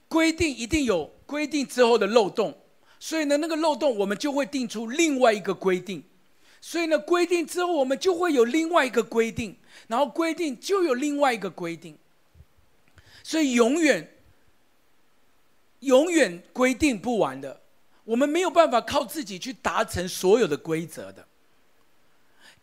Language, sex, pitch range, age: Chinese, male, 220-305 Hz, 50-69